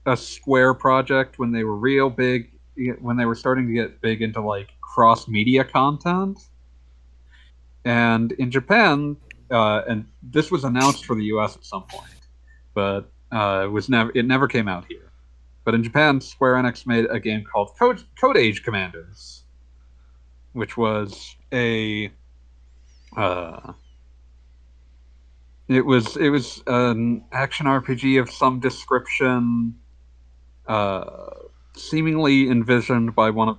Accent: American